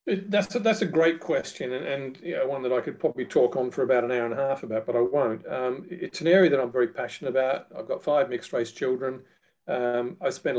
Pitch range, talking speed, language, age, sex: 120-165 Hz, 265 wpm, English, 50-69, male